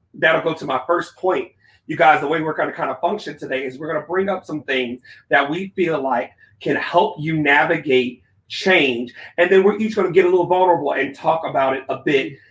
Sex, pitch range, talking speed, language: male, 130-165 Hz, 240 wpm, English